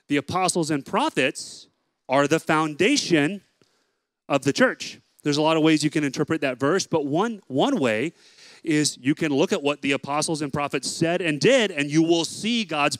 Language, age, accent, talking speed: English, 30-49, American, 195 wpm